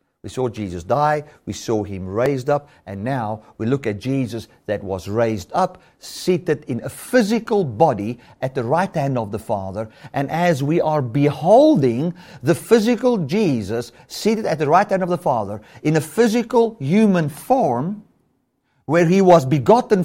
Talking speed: 170 wpm